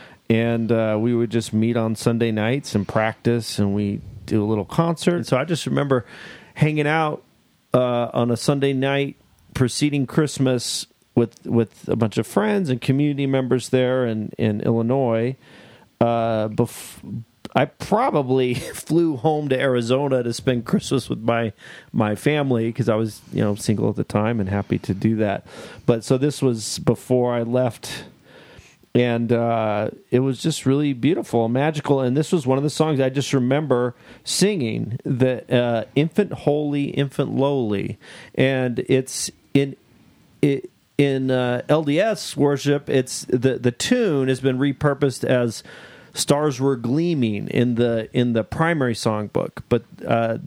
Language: English